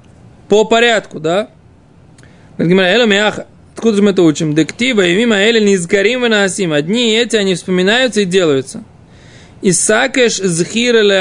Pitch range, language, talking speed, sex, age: 170-215 Hz, Russian, 140 wpm, male, 20-39